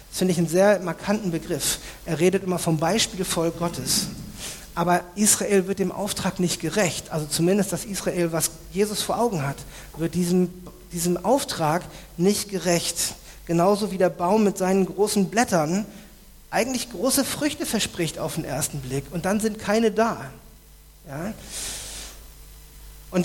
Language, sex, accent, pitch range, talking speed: German, male, German, 160-205 Hz, 150 wpm